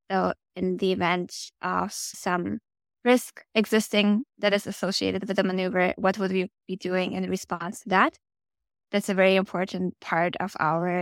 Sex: female